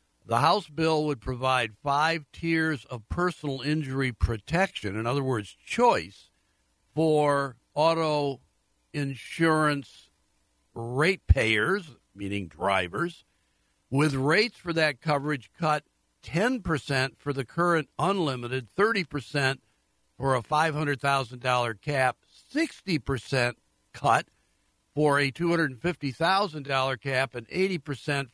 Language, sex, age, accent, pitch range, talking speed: English, male, 60-79, American, 120-160 Hz, 95 wpm